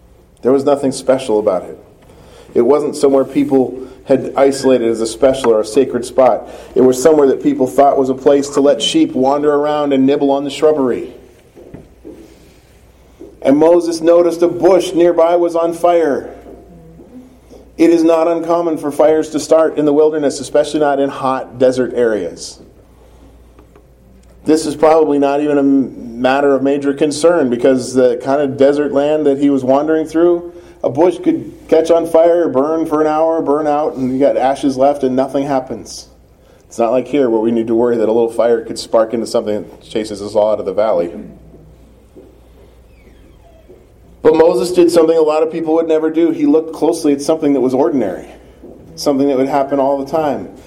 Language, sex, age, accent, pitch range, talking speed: English, male, 40-59, American, 130-160 Hz, 185 wpm